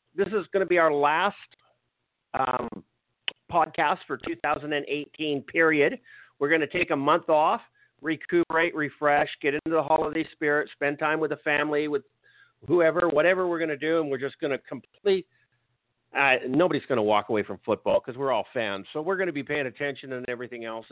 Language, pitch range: English, 120-155 Hz